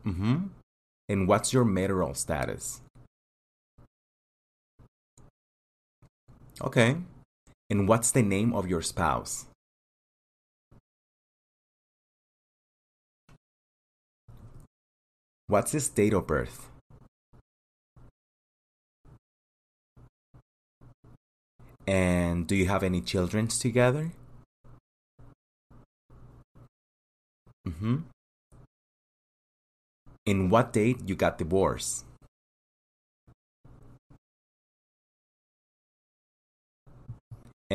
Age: 30-49